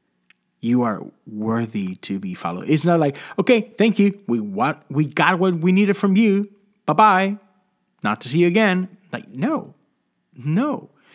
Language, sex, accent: English, male, American